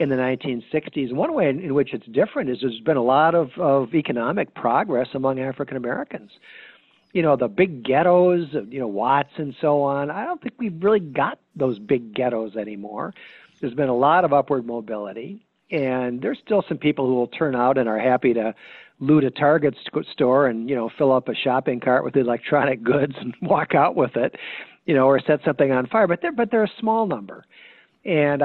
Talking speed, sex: 205 wpm, male